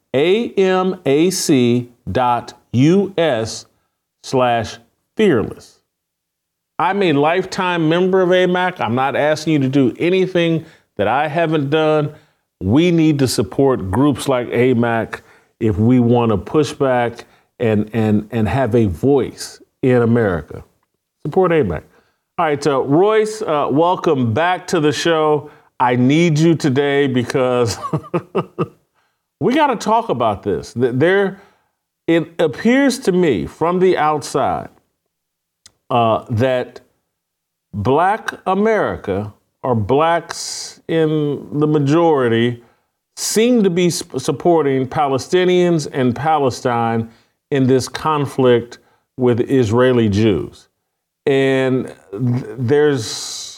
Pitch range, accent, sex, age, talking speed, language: 120-165 Hz, American, male, 40-59, 110 wpm, English